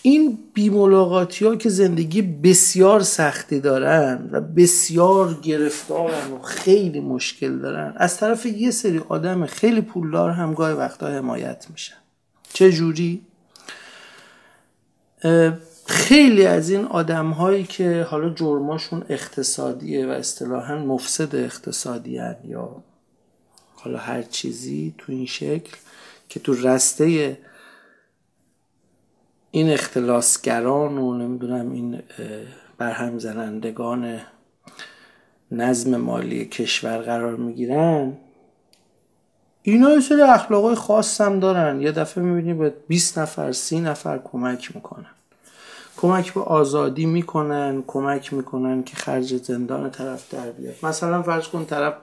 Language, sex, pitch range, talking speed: Persian, male, 130-180 Hz, 110 wpm